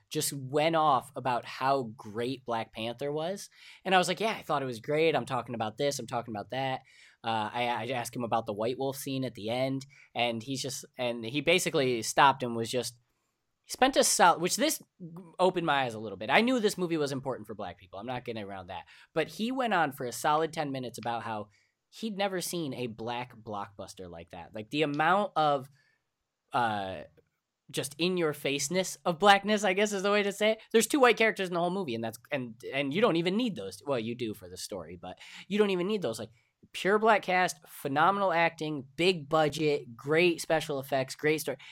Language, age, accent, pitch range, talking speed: English, 10-29, American, 115-175 Hz, 225 wpm